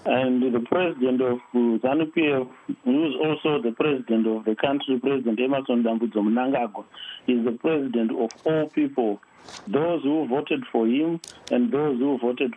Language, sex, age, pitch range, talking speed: English, male, 50-69, 120-160 Hz, 155 wpm